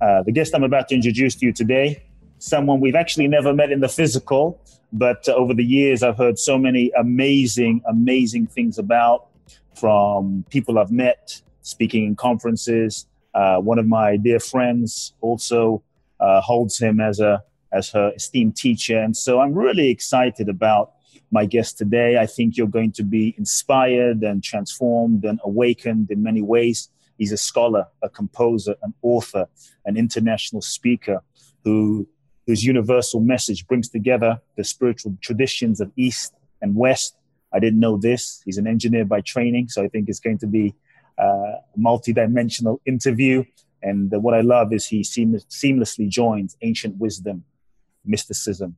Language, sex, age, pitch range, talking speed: English, male, 30-49, 105-125 Hz, 160 wpm